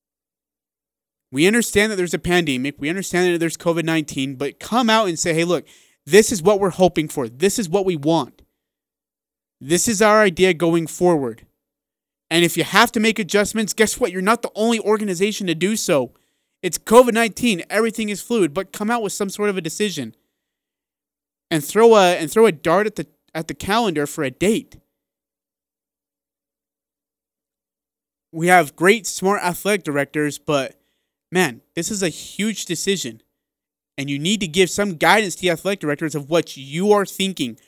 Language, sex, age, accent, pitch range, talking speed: English, male, 30-49, American, 145-200 Hz, 175 wpm